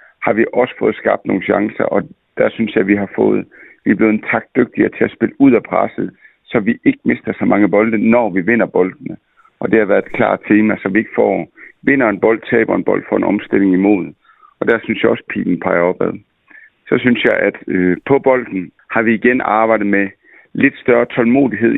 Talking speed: 220 wpm